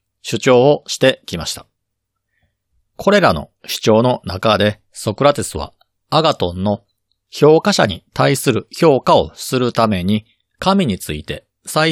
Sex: male